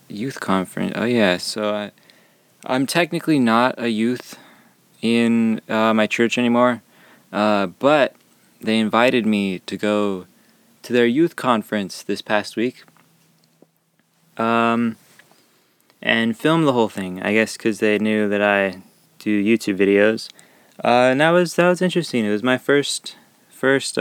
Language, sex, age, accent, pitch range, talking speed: English, male, 20-39, American, 105-125 Hz, 145 wpm